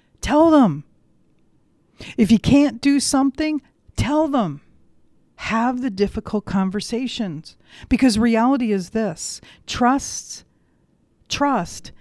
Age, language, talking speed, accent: 50-69, English, 95 wpm, American